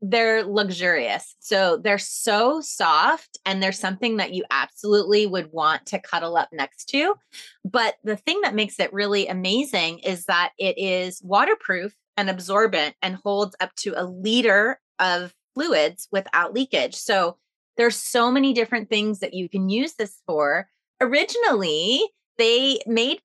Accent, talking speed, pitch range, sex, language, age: American, 150 wpm, 185-250 Hz, female, English, 30-49